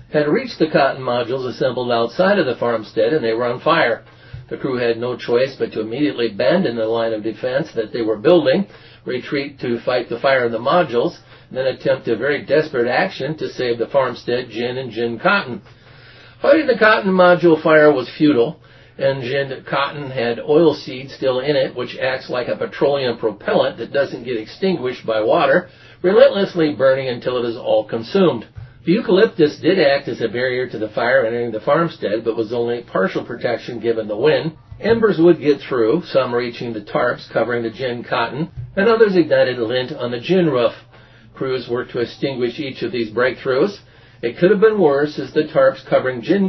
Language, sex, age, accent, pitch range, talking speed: English, male, 50-69, American, 120-160 Hz, 195 wpm